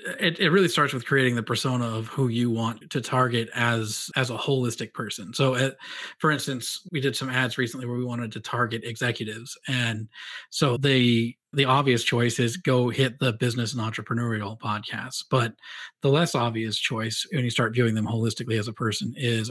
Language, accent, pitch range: English, American, 115-130 Hz